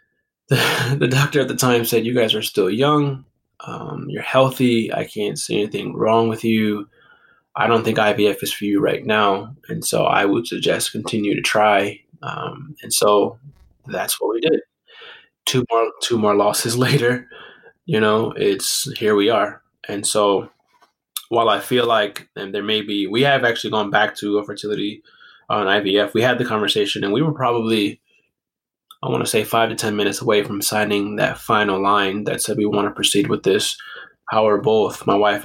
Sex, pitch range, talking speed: male, 105-120 Hz, 190 wpm